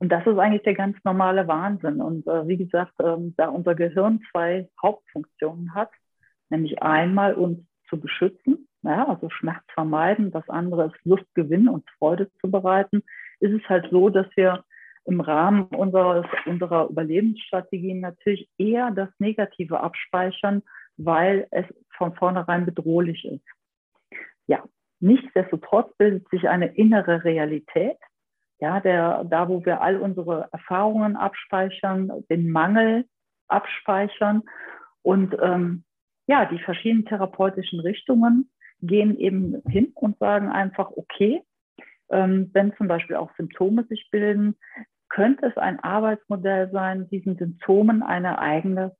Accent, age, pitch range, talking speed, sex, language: German, 50-69, 170-205 Hz, 135 wpm, female, German